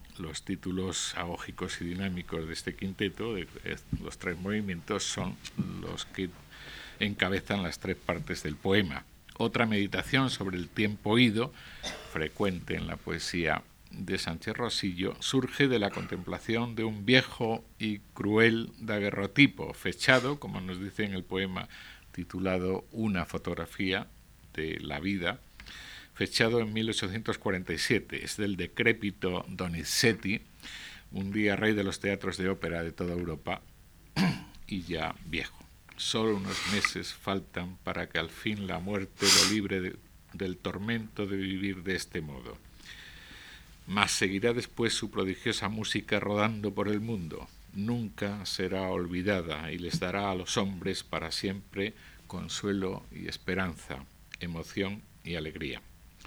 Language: Spanish